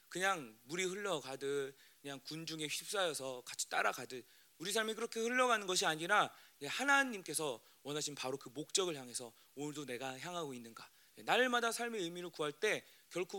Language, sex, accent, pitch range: Korean, male, native, 150-220 Hz